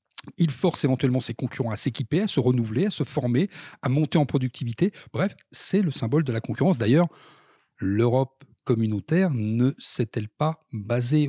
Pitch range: 115-150 Hz